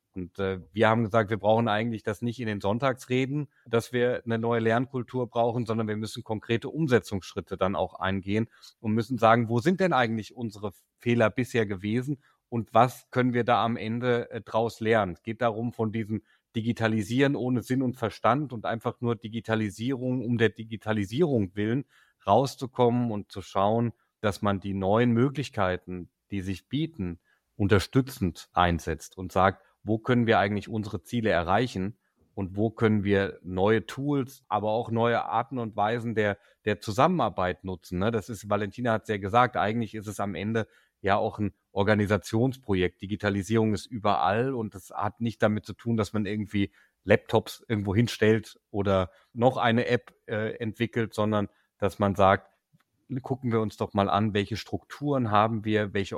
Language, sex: German, male